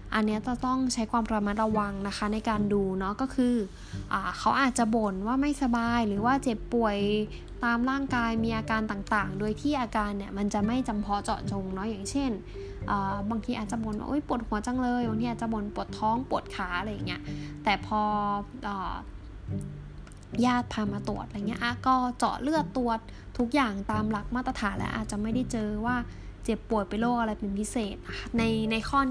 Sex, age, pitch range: female, 10-29, 205-240 Hz